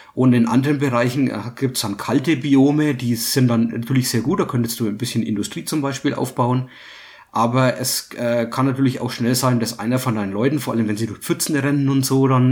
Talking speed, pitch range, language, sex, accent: 225 wpm, 110-135 Hz, English, male, German